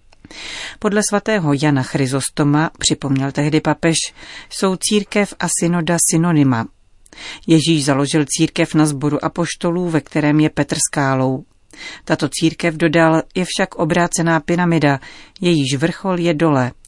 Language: Czech